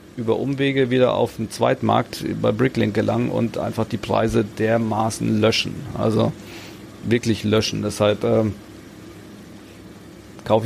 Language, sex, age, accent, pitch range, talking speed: German, male, 40-59, German, 110-125 Hz, 120 wpm